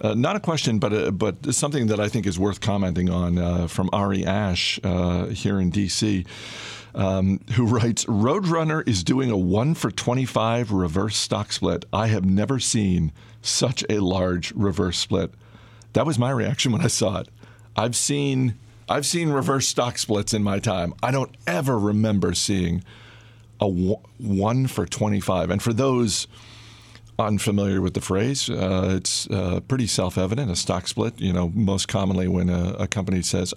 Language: English